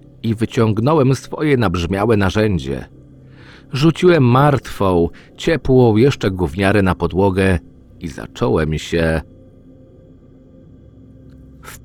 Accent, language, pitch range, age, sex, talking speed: native, Polish, 90-140 Hz, 40-59, male, 80 wpm